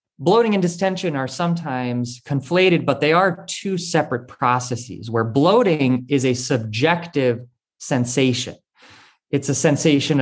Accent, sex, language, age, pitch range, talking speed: American, male, English, 20-39, 125-160 Hz, 125 wpm